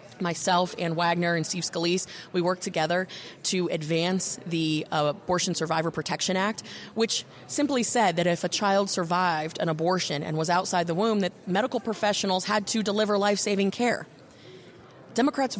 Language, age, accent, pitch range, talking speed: English, 30-49, American, 170-210 Hz, 160 wpm